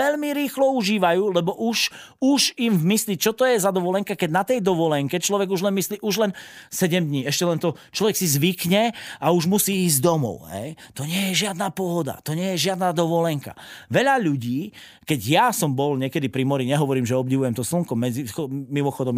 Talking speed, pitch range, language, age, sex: 200 wpm, 135-205 Hz, Slovak, 30-49, male